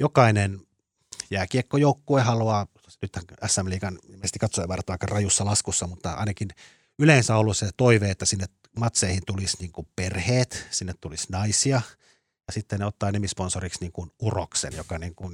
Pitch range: 90-110 Hz